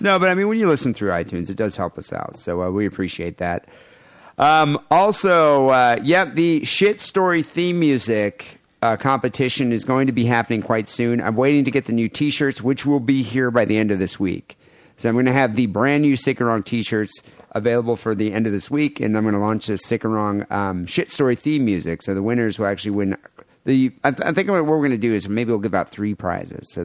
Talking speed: 245 wpm